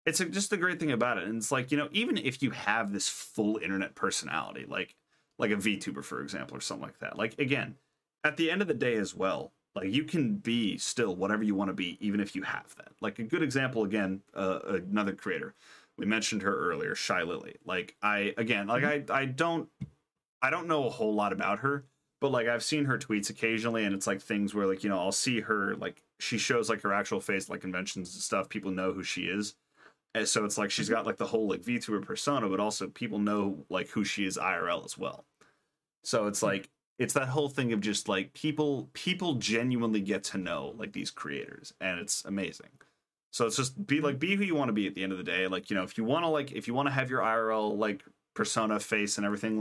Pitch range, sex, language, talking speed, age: 100-135 Hz, male, English, 240 wpm, 30-49